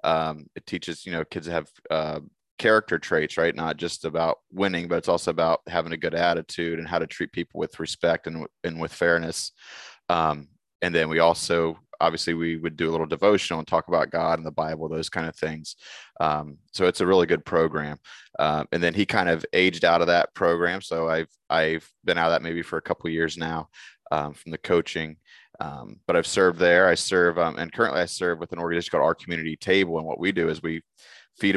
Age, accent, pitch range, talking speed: 20-39, American, 80-85 Hz, 225 wpm